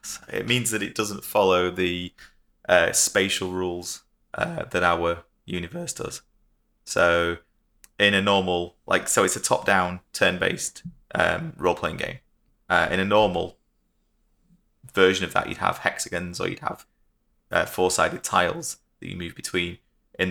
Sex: male